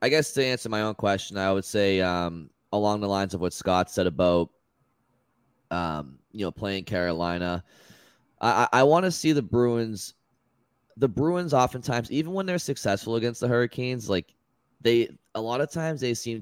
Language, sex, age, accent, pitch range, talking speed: English, male, 20-39, American, 90-115 Hz, 175 wpm